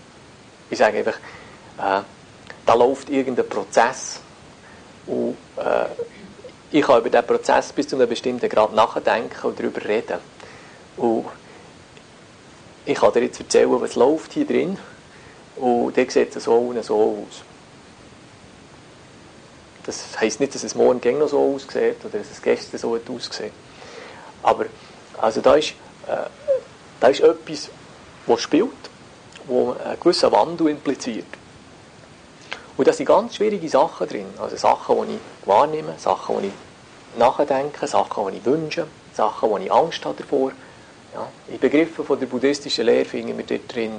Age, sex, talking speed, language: 50-69, male, 145 wpm, English